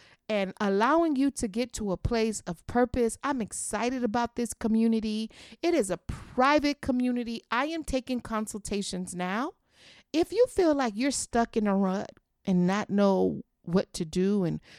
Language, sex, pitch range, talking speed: English, female, 195-255 Hz, 165 wpm